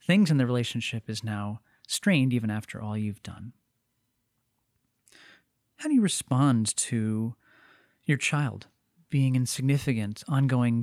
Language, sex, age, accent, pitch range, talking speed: English, male, 30-49, American, 115-150 Hz, 125 wpm